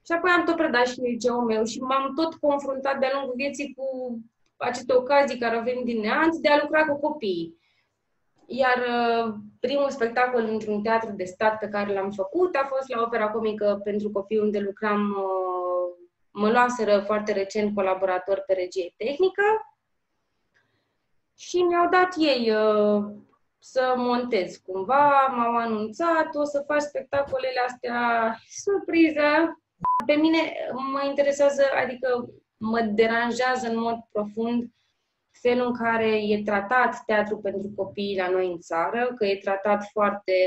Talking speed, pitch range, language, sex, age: 145 wpm, 210-280 Hz, Romanian, female, 20-39